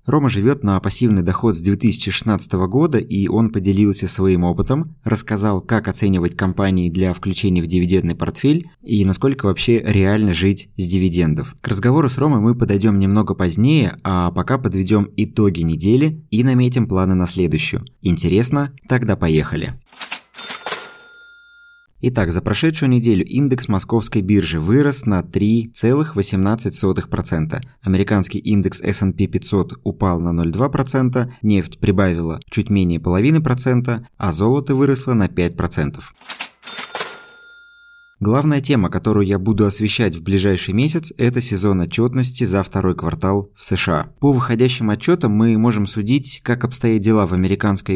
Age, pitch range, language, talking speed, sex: 20-39, 95-125 Hz, Russian, 135 wpm, male